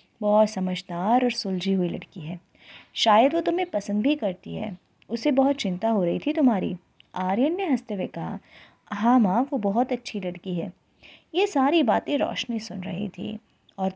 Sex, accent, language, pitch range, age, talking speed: female, native, Hindi, 205-270 Hz, 20-39, 175 wpm